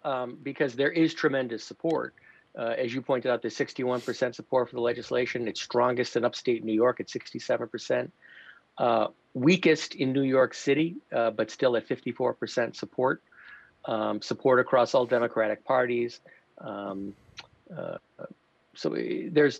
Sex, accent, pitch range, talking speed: male, American, 115-140 Hz, 155 wpm